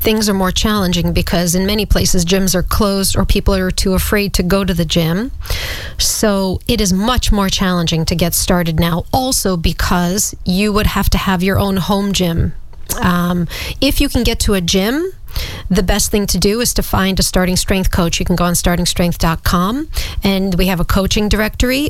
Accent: American